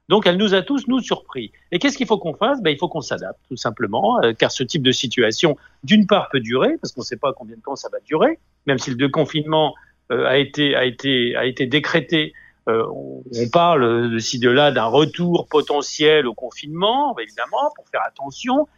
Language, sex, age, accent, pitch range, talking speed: French, male, 50-69, French, 135-200 Hz, 220 wpm